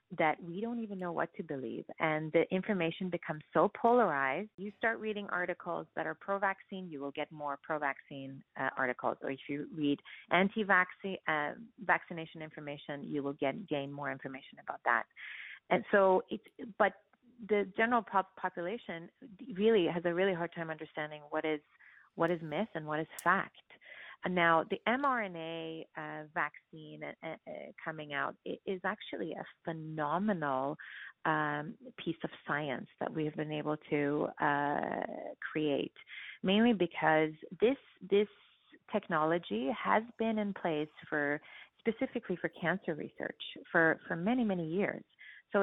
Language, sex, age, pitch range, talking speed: English, female, 30-49, 155-200 Hz, 145 wpm